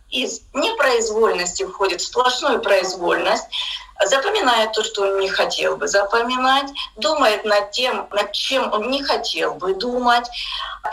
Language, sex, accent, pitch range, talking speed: Russian, female, native, 205-315 Hz, 130 wpm